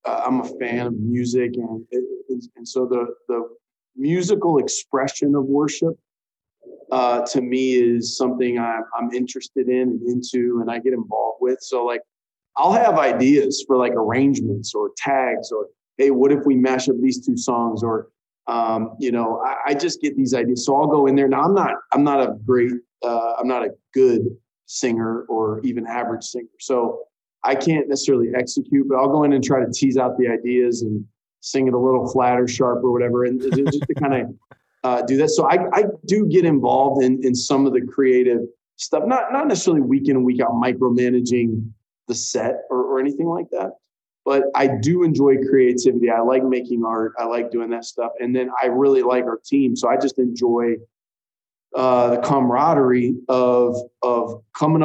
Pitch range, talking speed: 120-140 Hz, 195 wpm